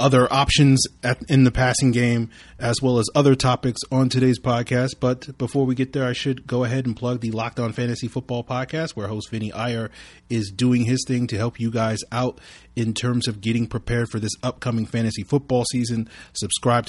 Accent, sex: American, male